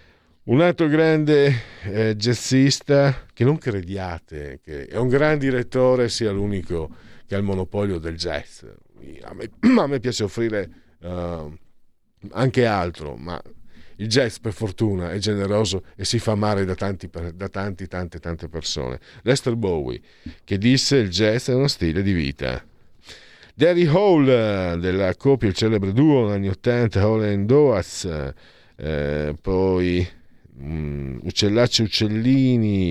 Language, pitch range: Italian, 80-110 Hz